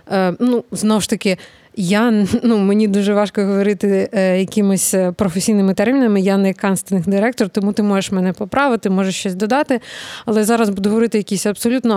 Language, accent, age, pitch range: Ukrainian, native, 20-39, 185-215 Hz